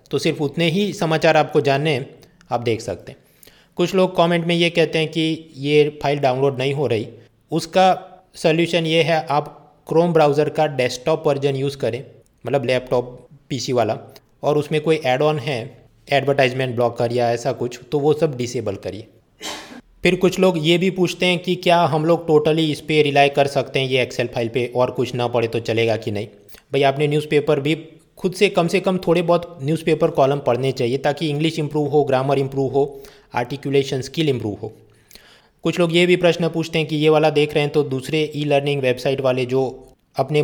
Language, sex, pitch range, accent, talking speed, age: Hindi, male, 130-160 Hz, native, 200 wpm, 20-39